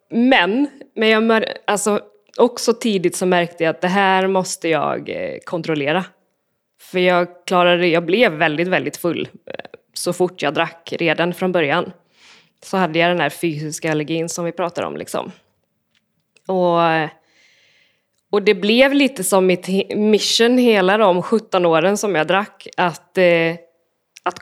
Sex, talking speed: female, 145 wpm